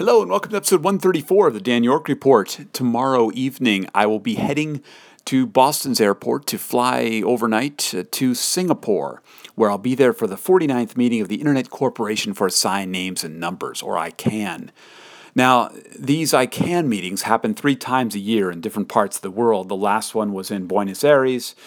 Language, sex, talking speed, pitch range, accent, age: English, male, 185 wpm, 100-135 Hz, American, 40-59